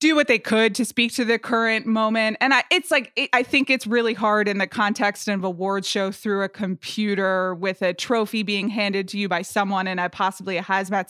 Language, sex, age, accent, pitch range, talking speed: English, female, 20-39, American, 195-240 Hz, 230 wpm